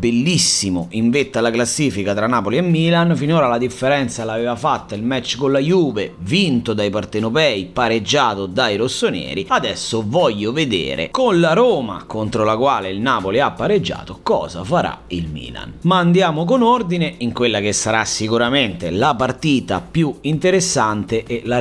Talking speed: 160 wpm